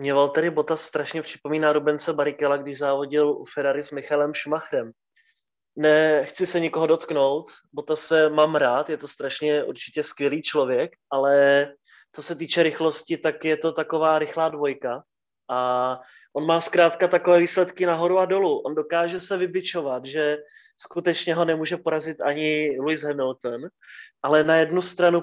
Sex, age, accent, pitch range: male, 20-39, native, 145-170 Hz